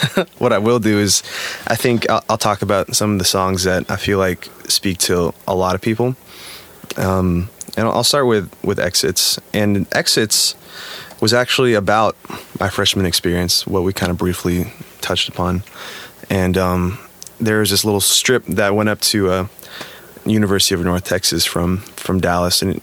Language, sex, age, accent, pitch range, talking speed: English, male, 20-39, American, 90-105 Hz, 175 wpm